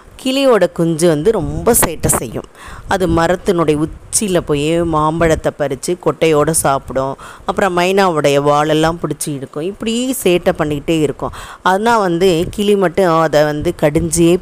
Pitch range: 145-180 Hz